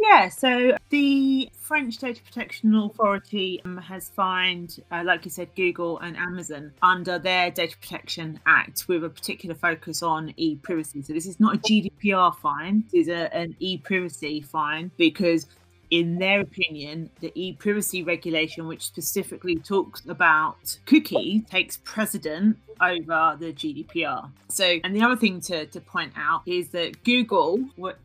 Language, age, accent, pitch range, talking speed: English, 30-49, British, 160-195 Hz, 150 wpm